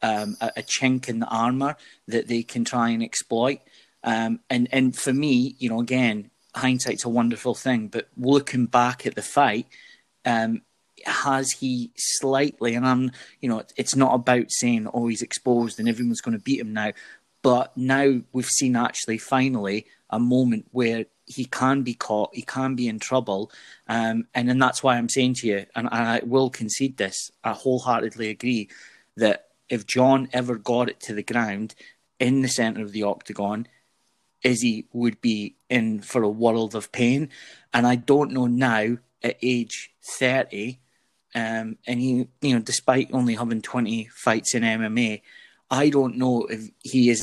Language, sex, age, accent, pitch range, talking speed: English, male, 30-49, British, 115-130 Hz, 175 wpm